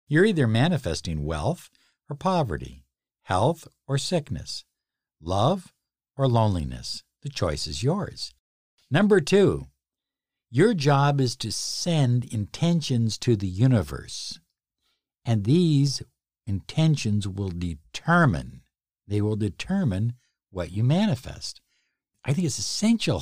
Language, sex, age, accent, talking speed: English, male, 60-79, American, 110 wpm